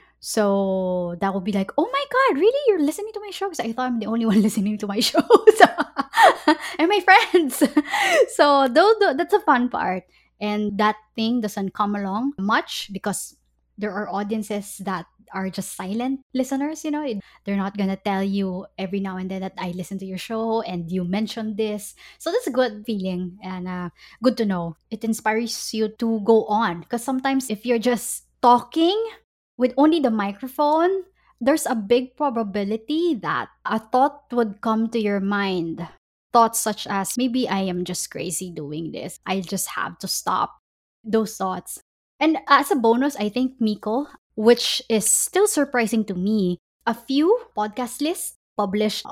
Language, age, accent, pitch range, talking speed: English, 20-39, Filipino, 200-280 Hz, 175 wpm